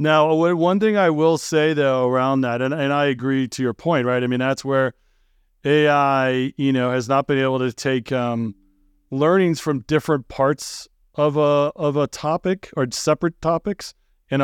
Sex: male